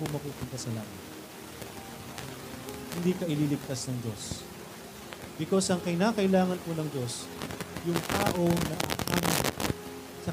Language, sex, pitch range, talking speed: Filipino, male, 135-195 Hz, 100 wpm